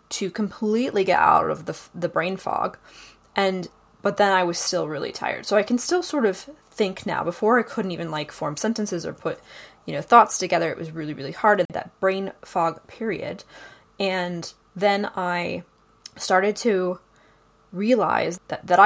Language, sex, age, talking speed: English, female, 20-39, 180 wpm